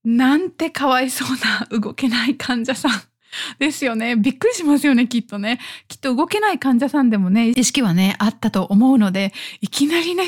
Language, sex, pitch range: Japanese, female, 210-285 Hz